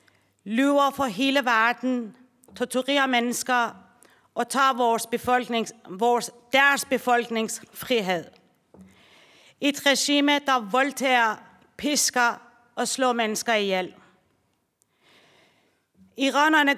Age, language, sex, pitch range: 40-59, Danish, female, 225-265 Hz